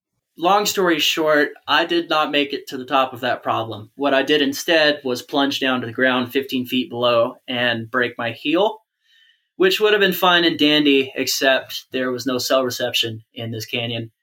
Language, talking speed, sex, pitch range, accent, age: English, 200 wpm, male, 115-135 Hz, American, 20-39